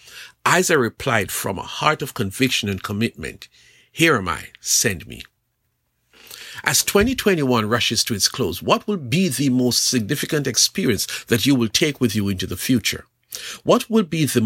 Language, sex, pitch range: English, male, 110-160 Hz